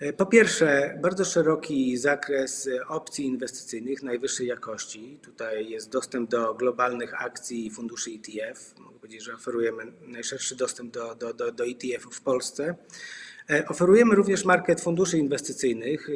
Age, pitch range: 30-49, 125-155 Hz